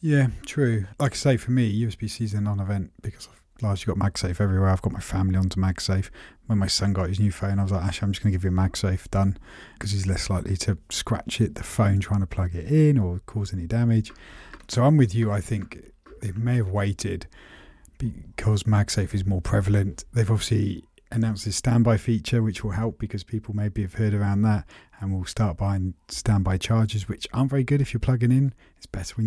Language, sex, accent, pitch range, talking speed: English, male, British, 95-115 Hz, 220 wpm